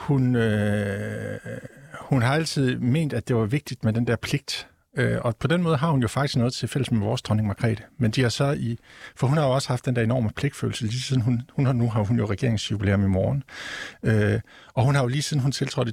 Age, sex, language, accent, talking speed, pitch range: 50-69, male, Danish, native, 250 wpm, 105-130 Hz